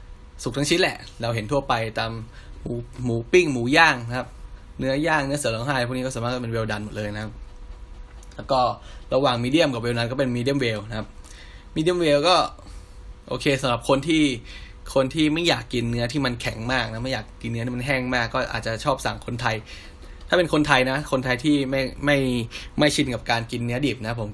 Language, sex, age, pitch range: Thai, male, 10-29, 110-130 Hz